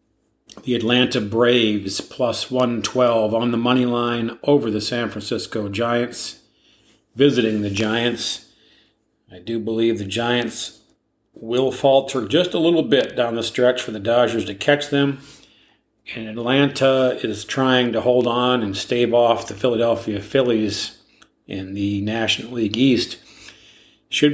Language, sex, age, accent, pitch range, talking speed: English, male, 40-59, American, 110-125 Hz, 140 wpm